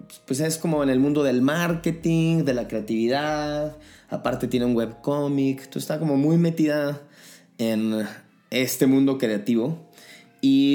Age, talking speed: 30-49, 140 wpm